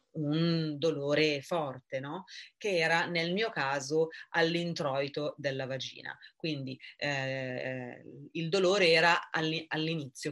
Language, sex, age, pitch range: Italian, female, 30-49, 140-160 Hz